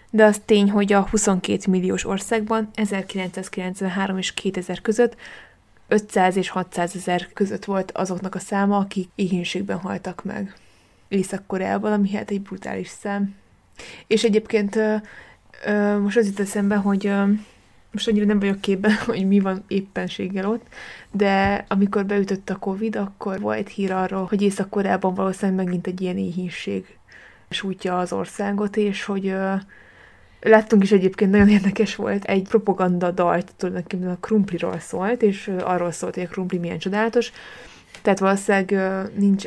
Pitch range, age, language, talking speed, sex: 185-210 Hz, 20-39, Hungarian, 145 wpm, female